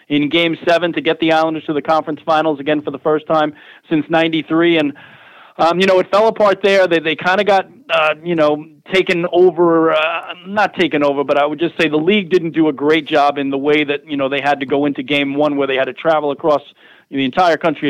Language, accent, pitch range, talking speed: English, American, 140-165 Hz, 245 wpm